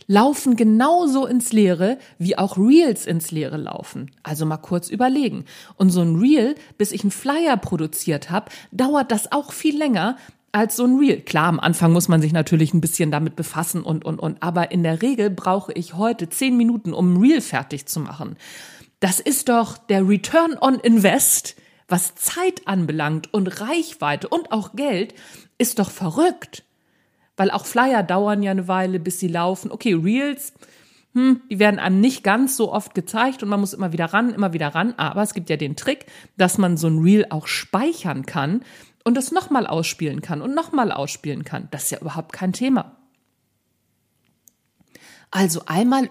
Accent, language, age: German, German, 50-69